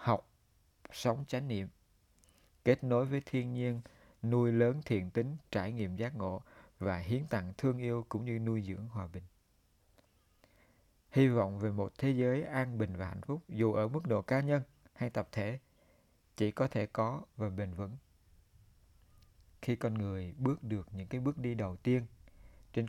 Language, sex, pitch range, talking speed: Vietnamese, male, 95-120 Hz, 175 wpm